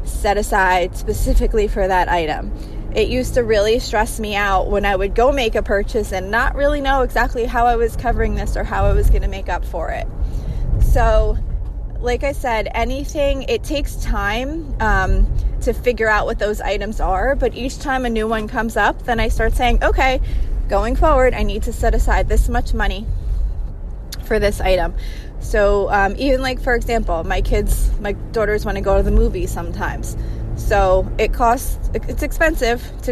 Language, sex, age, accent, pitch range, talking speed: English, female, 20-39, American, 185-240 Hz, 190 wpm